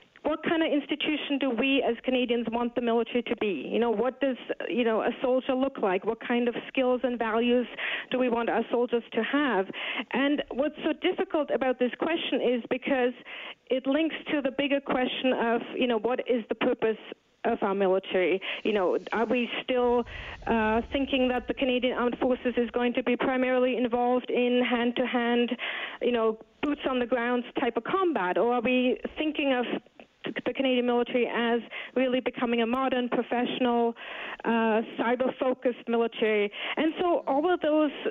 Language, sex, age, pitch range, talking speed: English, female, 40-59, 235-270 Hz, 175 wpm